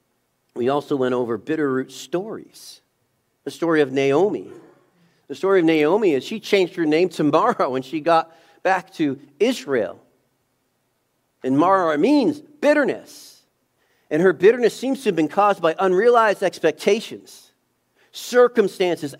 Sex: male